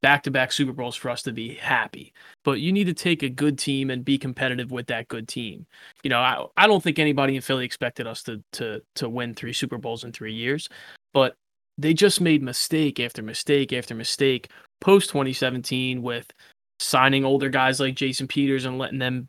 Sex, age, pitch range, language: male, 20-39, 130-165 Hz, English